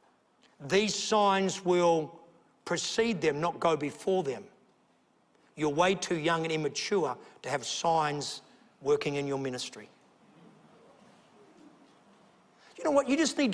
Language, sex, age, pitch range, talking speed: English, male, 60-79, 175-245 Hz, 125 wpm